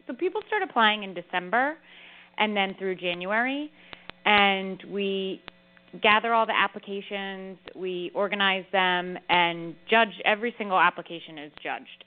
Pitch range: 170-205 Hz